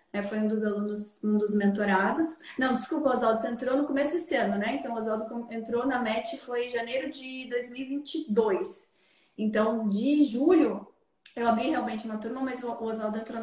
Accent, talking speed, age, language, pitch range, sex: Brazilian, 175 wpm, 20-39, Portuguese, 220-275 Hz, female